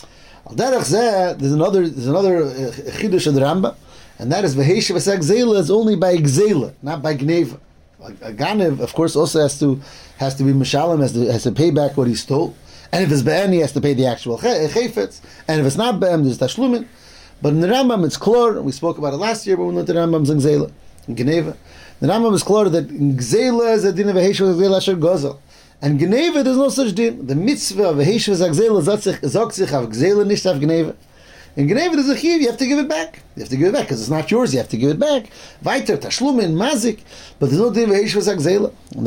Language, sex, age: English, male, 30-49